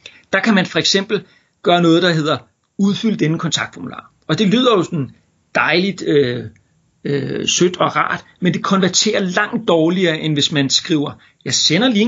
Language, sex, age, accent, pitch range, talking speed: Danish, male, 40-59, native, 150-195 Hz, 175 wpm